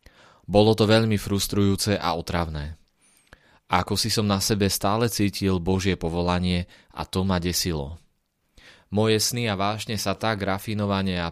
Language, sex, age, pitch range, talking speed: Slovak, male, 20-39, 90-100 Hz, 145 wpm